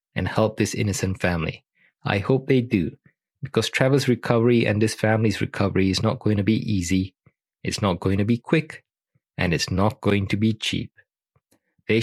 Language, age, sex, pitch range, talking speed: English, 20-39, male, 100-115 Hz, 180 wpm